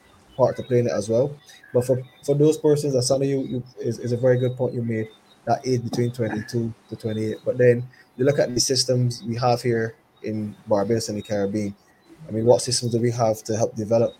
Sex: male